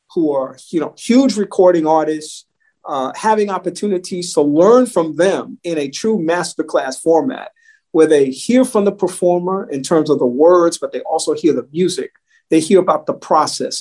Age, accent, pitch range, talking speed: 50-69, American, 150-190 Hz, 180 wpm